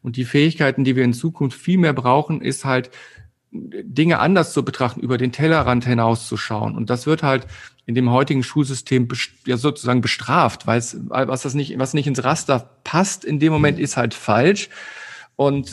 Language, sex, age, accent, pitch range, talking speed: German, male, 40-59, German, 125-150 Hz, 185 wpm